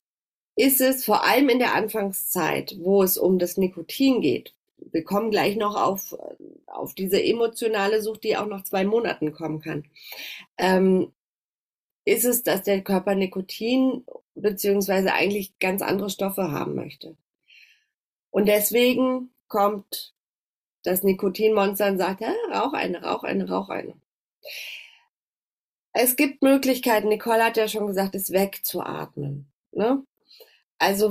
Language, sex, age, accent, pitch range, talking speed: German, female, 30-49, German, 190-235 Hz, 135 wpm